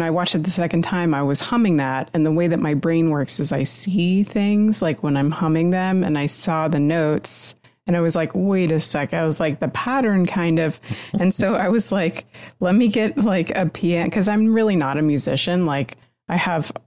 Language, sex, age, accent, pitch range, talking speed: English, female, 30-49, American, 150-180 Hz, 230 wpm